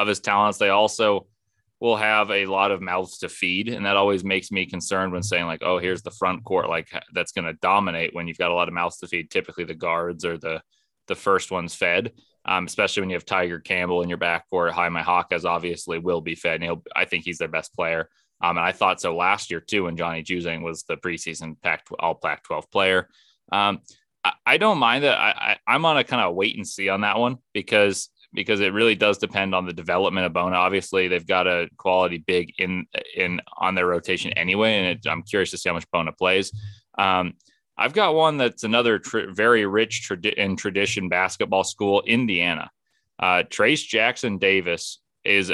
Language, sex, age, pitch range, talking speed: English, male, 20-39, 90-105 Hz, 220 wpm